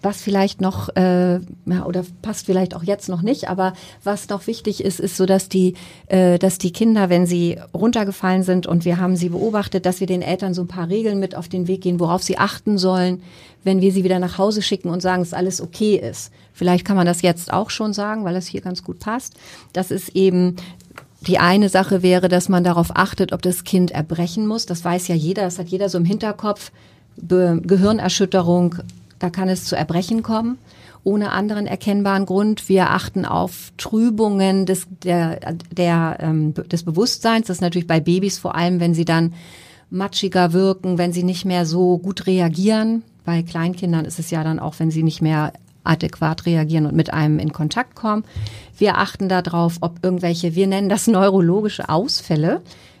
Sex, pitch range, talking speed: female, 175-195 Hz, 195 wpm